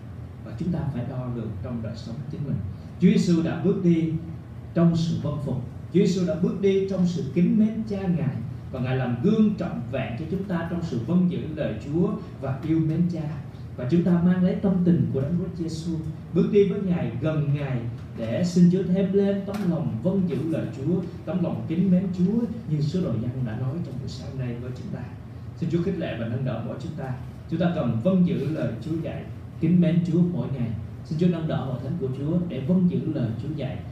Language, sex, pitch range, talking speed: Vietnamese, male, 125-175 Hz, 230 wpm